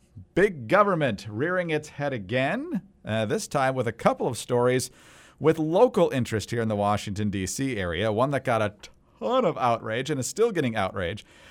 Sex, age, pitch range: male, 50-69, 110-155 Hz